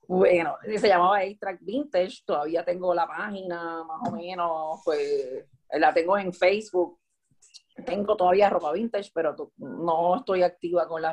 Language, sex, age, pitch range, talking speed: Spanish, female, 40-59, 175-240 Hz, 145 wpm